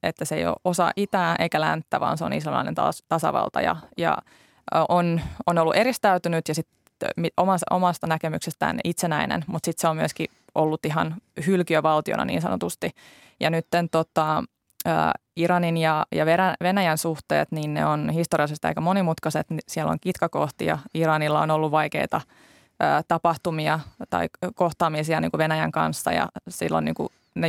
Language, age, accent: Finnish, 20-39, native